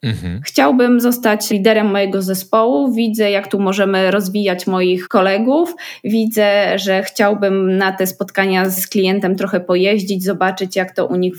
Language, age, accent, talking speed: Polish, 20-39, native, 140 wpm